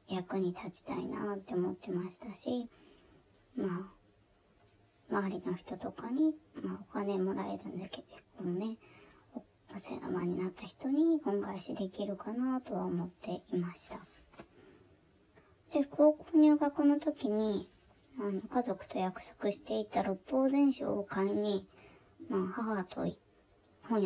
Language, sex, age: Japanese, male, 20-39